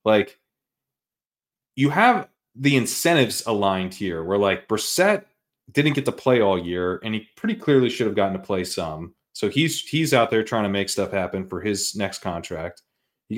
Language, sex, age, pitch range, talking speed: English, male, 30-49, 95-135 Hz, 185 wpm